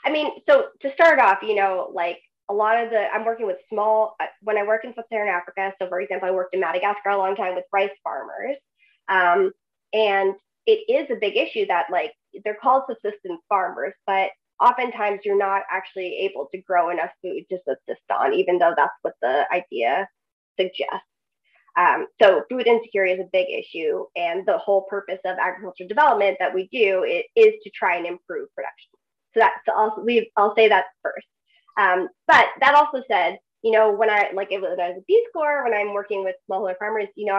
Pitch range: 195-260 Hz